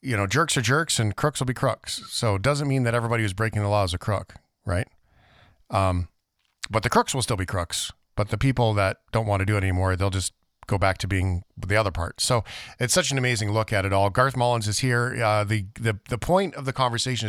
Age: 40-59